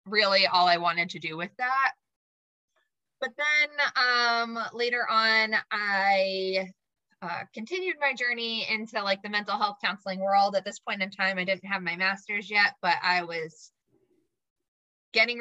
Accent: American